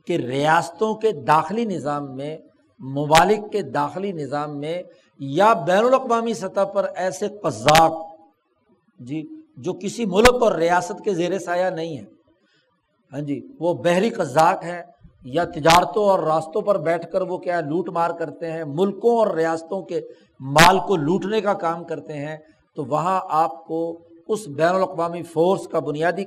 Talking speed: 160 wpm